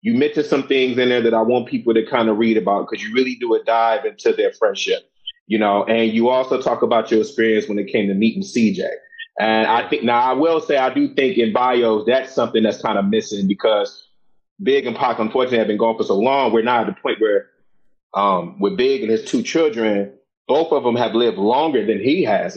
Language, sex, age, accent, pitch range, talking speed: English, male, 30-49, American, 115-140 Hz, 240 wpm